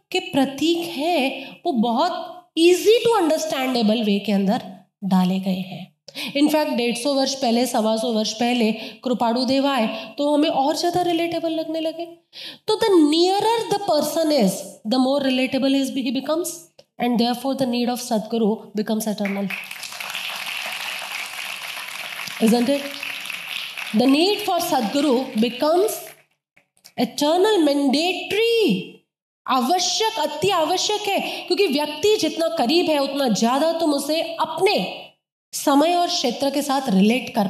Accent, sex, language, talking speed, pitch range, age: native, female, Hindi, 130 wpm, 220-330 Hz, 20-39